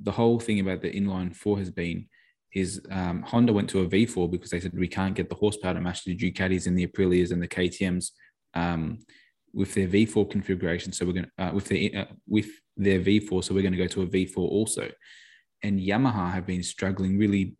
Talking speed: 215 wpm